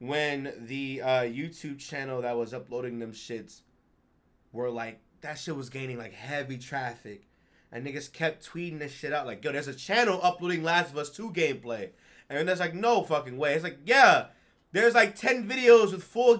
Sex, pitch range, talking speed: male, 135-210 Hz, 195 wpm